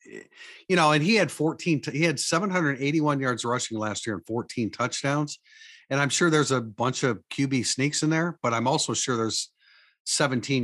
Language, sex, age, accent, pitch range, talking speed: English, male, 50-69, American, 110-145 Hz, 185 wpm